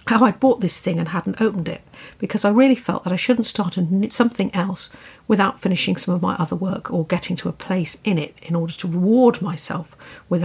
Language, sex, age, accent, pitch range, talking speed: English, female, 50-69, British, 170-215 Hz, 235 wpm